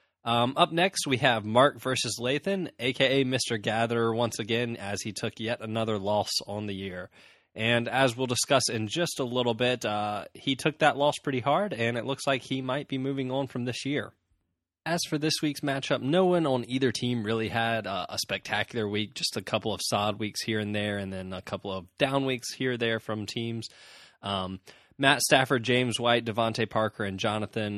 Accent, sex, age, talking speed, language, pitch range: American, male, 20-39, 205 wpm, English, 105-135 Hz